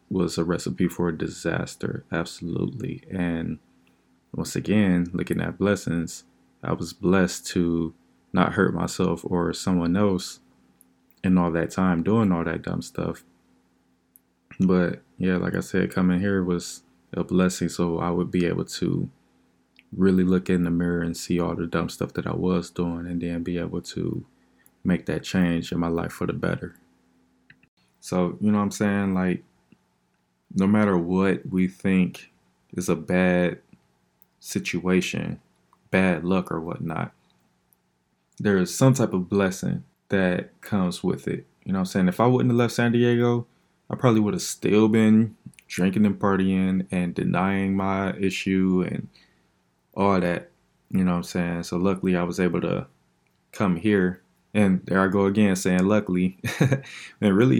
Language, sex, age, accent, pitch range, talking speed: English, male, 20-39, American, 85-95 Hz, 165 wpm